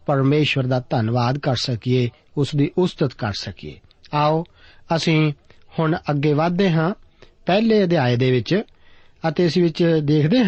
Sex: male